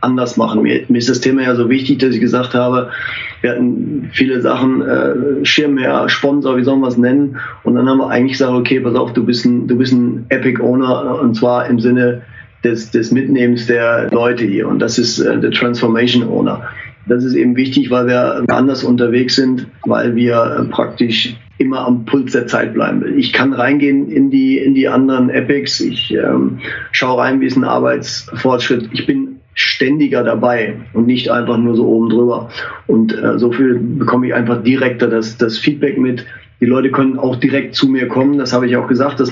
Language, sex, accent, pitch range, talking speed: German, male, German, 120-135 Hz, 200 wpm